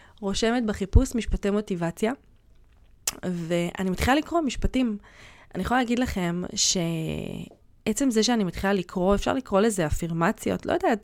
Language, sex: Hebrew, female